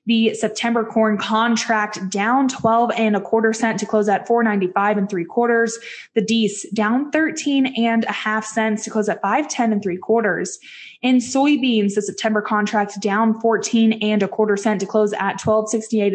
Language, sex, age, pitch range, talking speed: English, female, 20-39, 205-230 Hz, 175 wpm